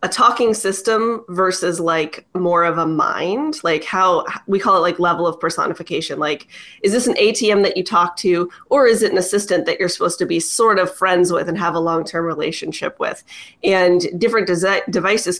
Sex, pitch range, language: female, 170-205 Hz, English